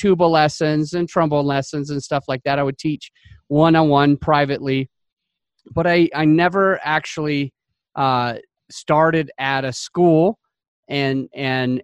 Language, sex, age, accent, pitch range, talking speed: English, male, 30-49, American, 140-195 Hz, 130 wpm